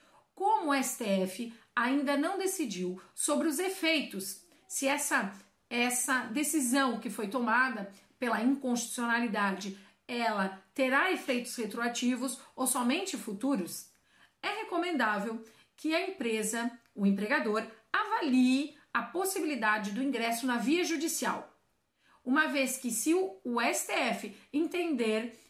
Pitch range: 220-305 Hz